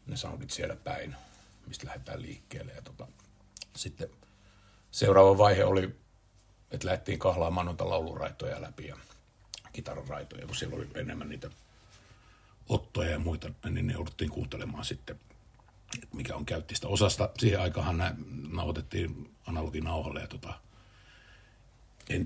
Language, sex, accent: Finnish, male, native